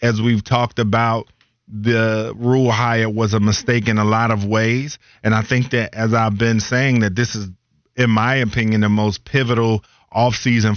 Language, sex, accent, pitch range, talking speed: English, male, American, 110-120 Hz, 185 wpm